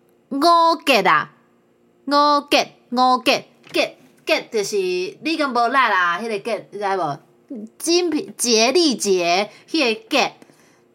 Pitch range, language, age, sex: 200-320 Hz, Chinese, 30-49, female